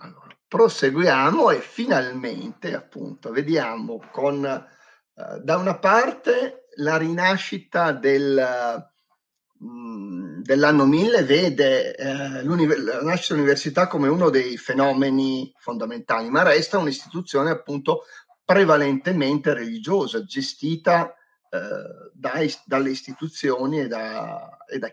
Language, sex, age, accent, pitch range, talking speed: Italian, male, 40-59, native, 135-215 Hz, 105 wpm